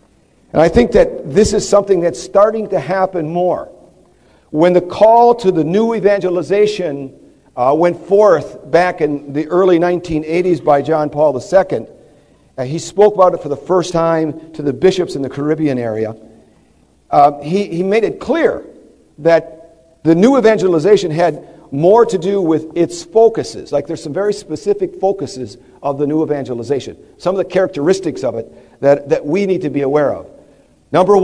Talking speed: 170 wpm